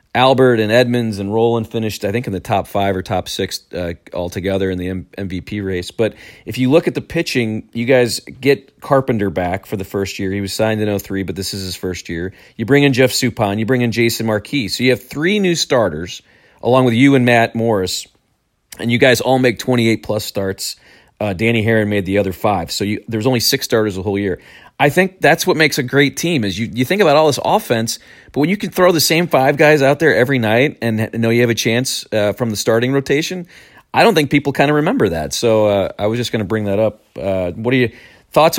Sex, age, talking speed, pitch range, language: male, 40-59, 240 wpm, 100-125 Hz, English